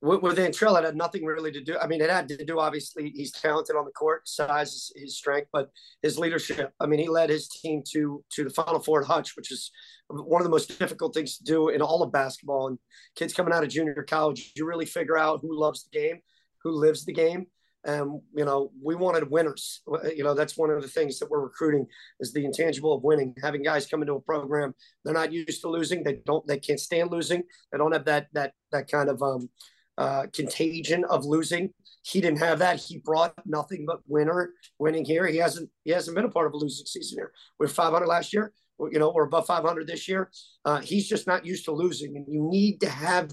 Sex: male